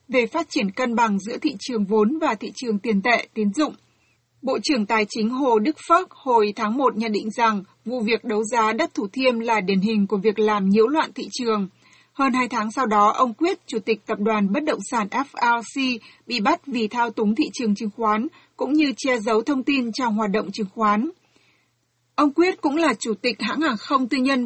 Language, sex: Vietnamese, female